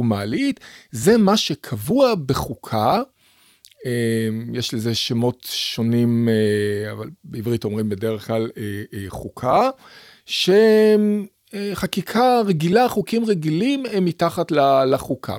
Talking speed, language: 85 wpm, Hebrew